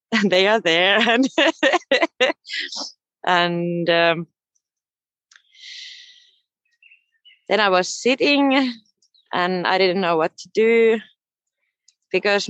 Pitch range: 180-250 Hz